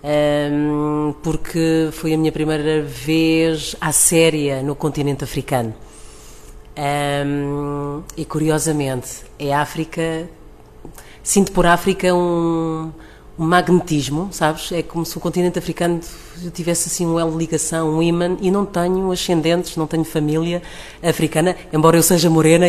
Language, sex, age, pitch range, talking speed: Portuguese, female, 30-49, 145-165 Hz, 120 wpm